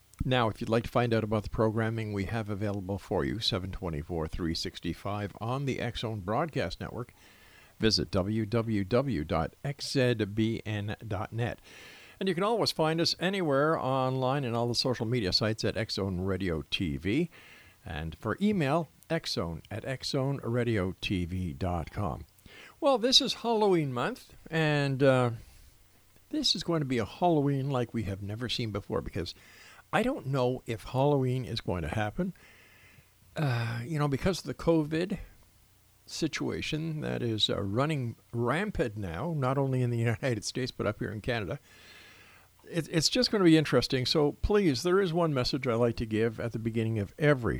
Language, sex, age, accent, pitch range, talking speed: English, male, 50-69, American, 100-140 Hz, 155 wpm